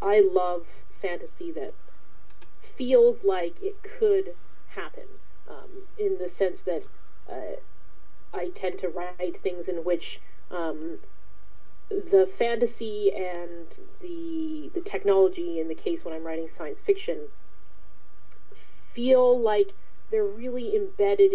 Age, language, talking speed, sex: 30-49, English, 120 wpm, female